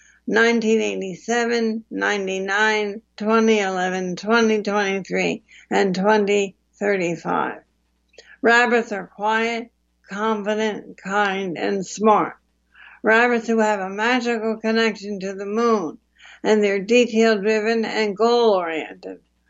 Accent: American